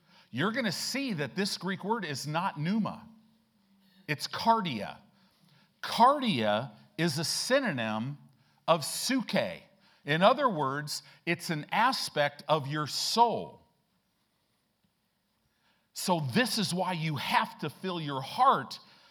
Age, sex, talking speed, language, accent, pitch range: 50-69, male, 115 wpm, English, American, 155-220 Hz